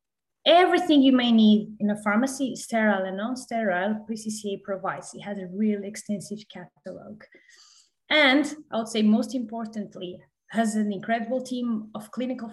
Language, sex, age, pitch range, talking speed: Greek, female, 20-39, 195-240 Hz, 145 wpm